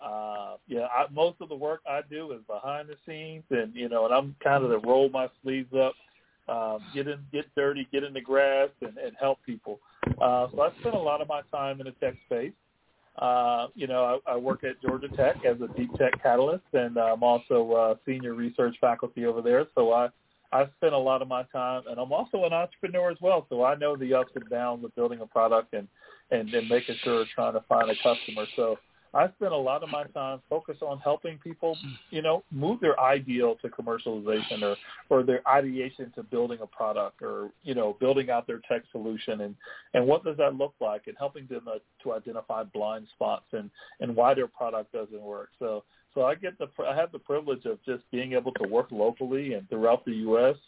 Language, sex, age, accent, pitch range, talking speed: English, male, 40-59, American, 115-145 Hz, 225 wpm